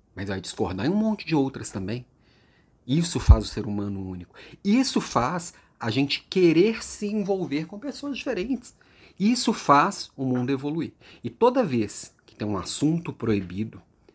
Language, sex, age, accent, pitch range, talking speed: Portuguese, male, 40-59, Brazilian, 105-150 Hz, 160 wpm